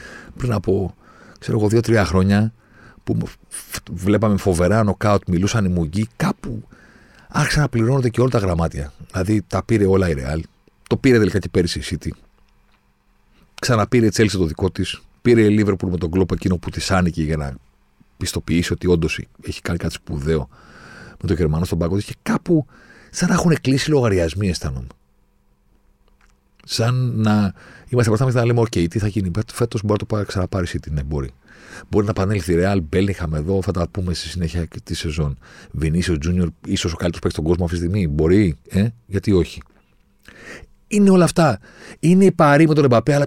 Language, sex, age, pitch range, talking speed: Greek, male, 40-59, 85-115 Hz, 180 wpm